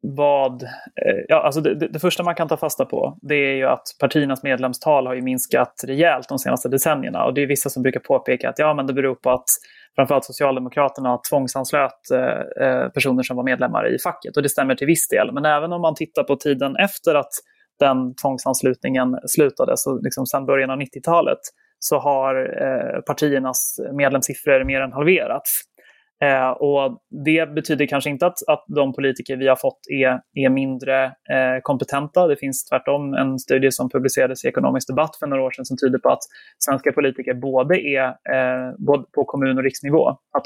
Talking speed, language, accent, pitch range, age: 190 wpm, Swedish, native, 130-155 Hz, 20-39